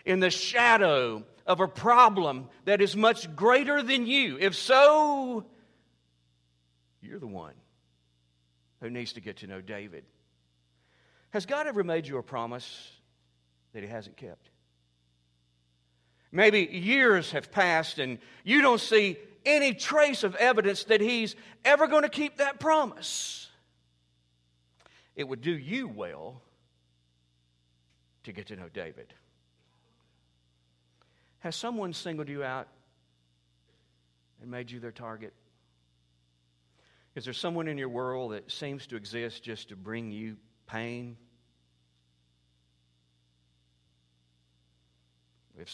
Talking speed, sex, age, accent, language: 120 wpm, male, 50-69, American, English